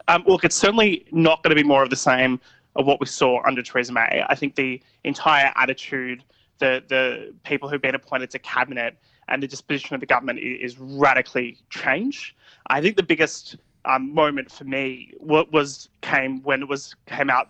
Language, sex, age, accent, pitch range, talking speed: English, male, 20-39, Australian, 130-155 Hz, 195 wpm